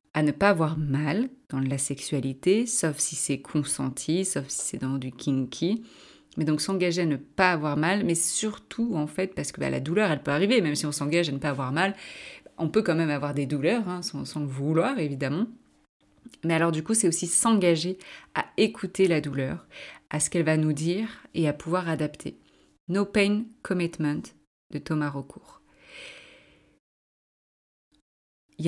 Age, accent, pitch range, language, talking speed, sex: 30-49, French, 145-190 Hz, French, 185 wpm, female